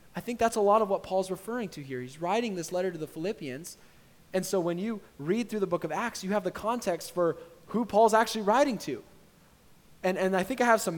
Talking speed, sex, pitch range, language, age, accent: 245 wpm, male, 140-205 Hz, English, 20-39, American